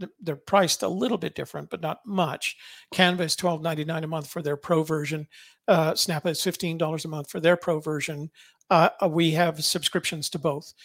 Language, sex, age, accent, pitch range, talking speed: English, male, 50-69, American, 155-180 Hz, 190 wpm